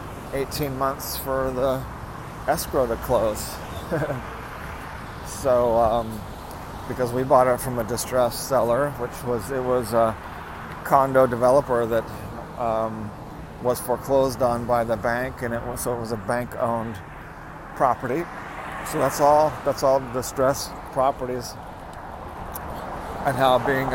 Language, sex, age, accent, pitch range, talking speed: English, male, 40-59, American, 110-130 Hz, 130 wpm